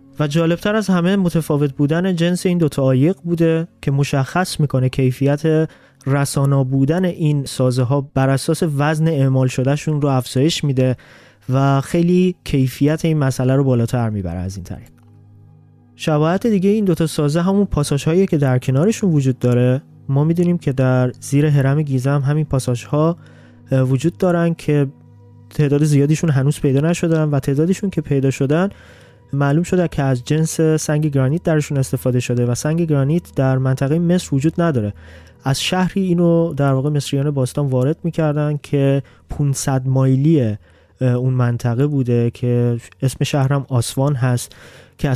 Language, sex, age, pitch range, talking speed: Persian, male, 20-39, 130-155 Hz, 155 wpm